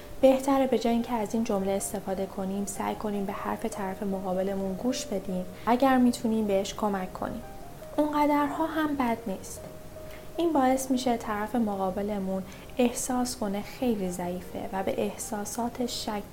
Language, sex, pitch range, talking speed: Persian, female, 195-245 Hz, 145 wpm